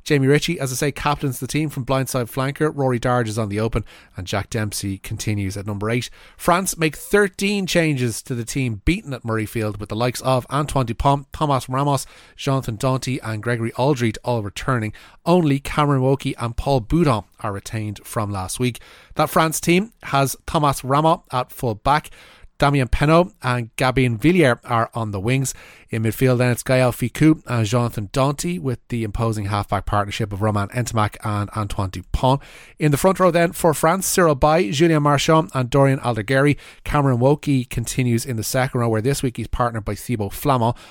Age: 30-49